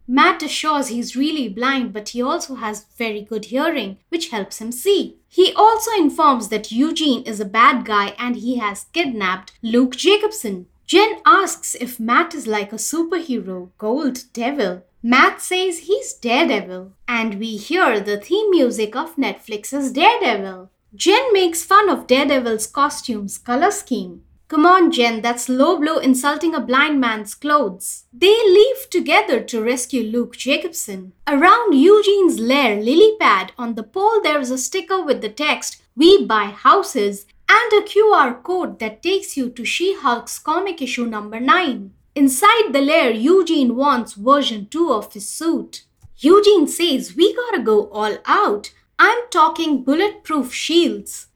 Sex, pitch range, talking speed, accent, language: female, 230-355 Hz, 155 wpm, Indian, English